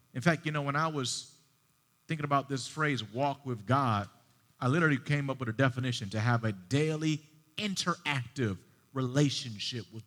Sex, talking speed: male, 165 wpm